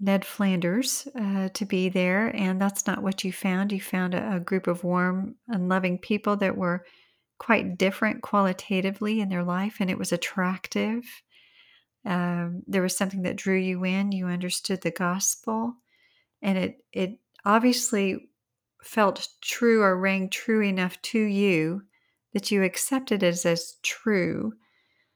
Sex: female